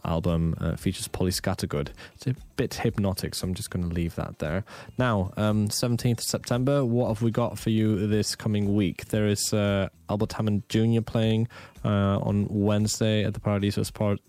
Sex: male